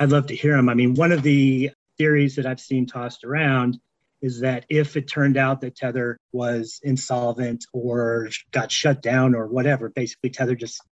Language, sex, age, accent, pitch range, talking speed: English, male, 40-59, American, 125-145 Hz, 190 wpm